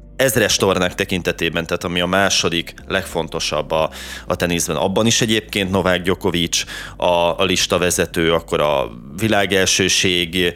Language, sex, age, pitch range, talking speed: Hungarian, male, 30-49, 85-105 Hz, 130 wpm